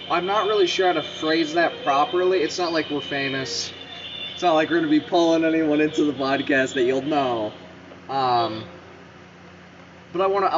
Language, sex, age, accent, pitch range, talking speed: English, male, 20-39, American, 130-190 Hz, 180 wpm